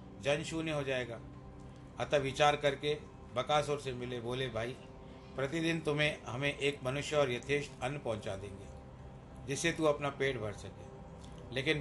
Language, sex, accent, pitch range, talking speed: Hindi, male, native, 120-145 Hz, 145 wpm